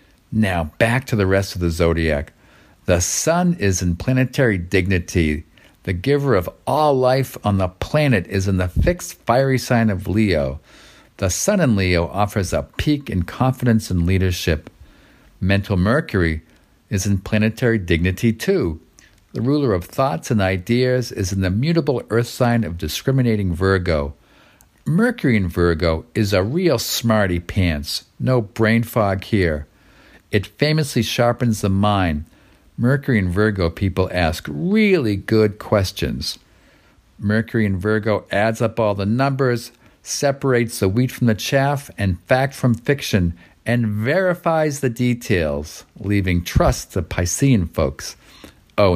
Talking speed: 140 wpm